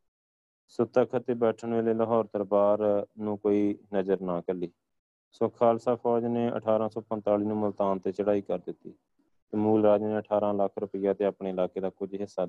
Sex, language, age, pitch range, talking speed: male, Punjabi, 20-39, 95-110 Hz, 170 wpm